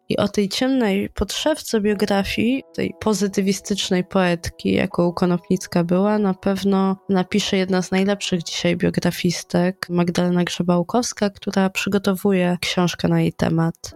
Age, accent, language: 20-39, native, Polish